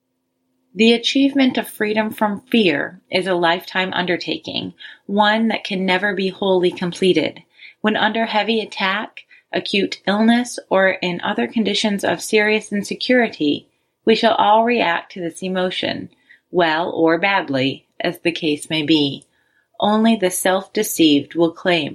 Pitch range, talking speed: 165-215 Hz, 140 wpm